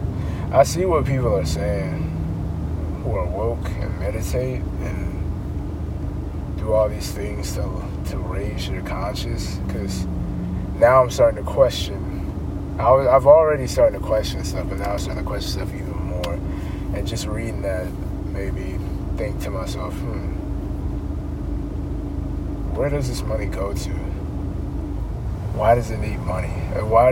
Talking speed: 140 wpm